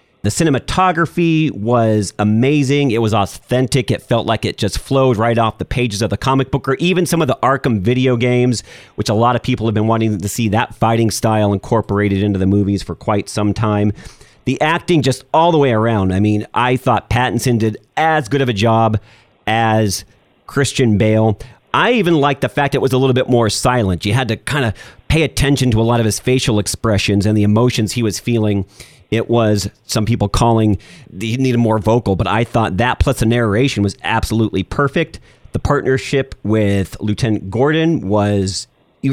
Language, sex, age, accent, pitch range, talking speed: English, male, 40-59, American, 105-135 Hz, 200 wpm